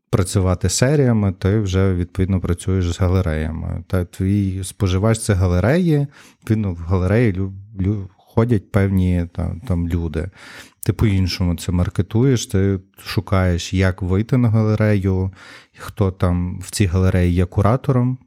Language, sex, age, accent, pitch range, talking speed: Ukrainian, male, 30-49, native, 95-110 Hz, 125 wpm